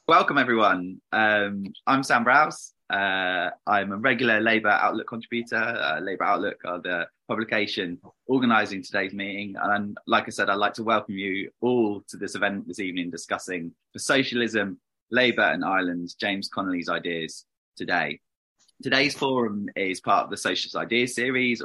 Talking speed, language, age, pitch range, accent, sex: 160 wpm, English, 20-39, 95-130 Hz, British, male